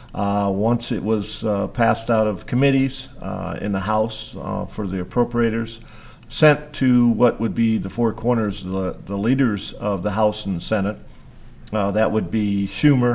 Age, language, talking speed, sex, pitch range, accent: 50-69, English, 180 wpm, male, 100-120 Hz, American